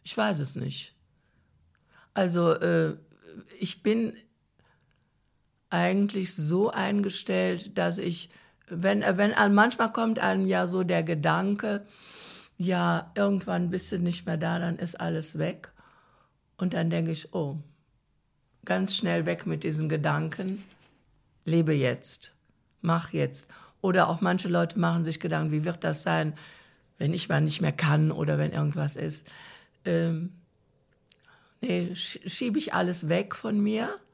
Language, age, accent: German, 60-79, German